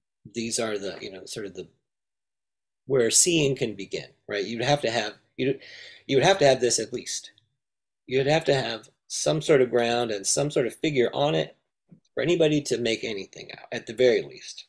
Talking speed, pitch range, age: 210 wpm, 115-140 Hz, 40-59